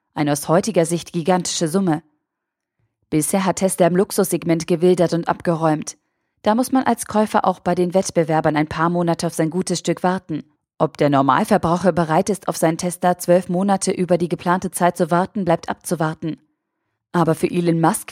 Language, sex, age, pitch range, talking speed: German, female, 20-39, 165-205 Hz, 175 wpm